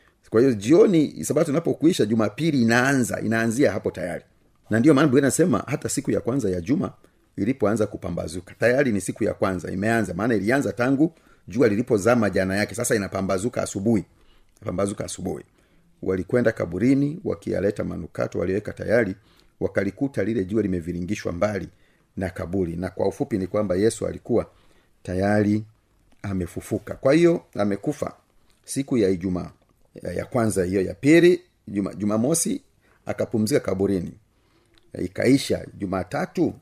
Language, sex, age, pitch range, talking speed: Swahili, male, 40-59, 95-120 Hz, 135 wpm